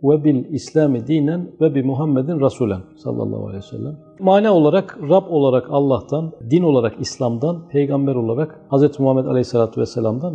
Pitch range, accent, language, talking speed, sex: 125-165 Hz, native, Turkish, 150 wpm, male